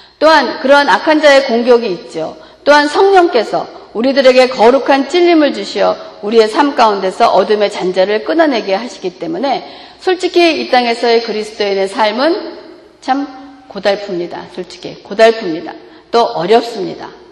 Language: Korean